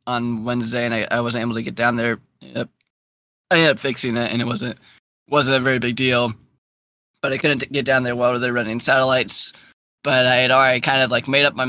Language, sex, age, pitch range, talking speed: English, male, 10-29, 120-140 Hz, 230 wpm